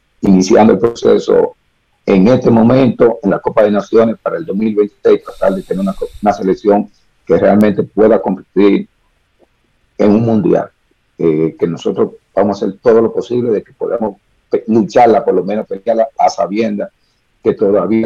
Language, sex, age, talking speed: Spanish, male, 50-69, 165 wpm